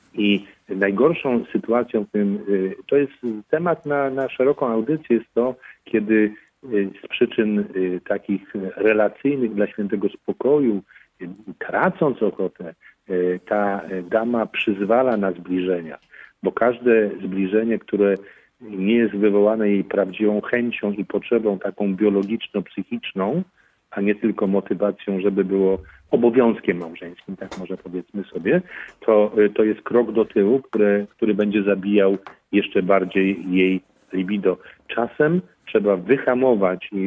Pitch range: 95-110 Hz